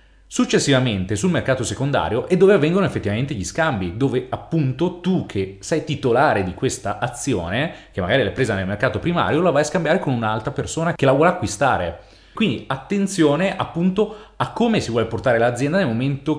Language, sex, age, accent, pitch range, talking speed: Italian, male, 30-49, native, 100-145 Hz, 175 wpm